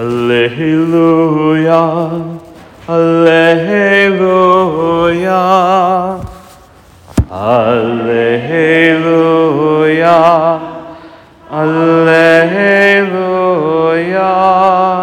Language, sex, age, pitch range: English, male, 40-59, 110-165 Hz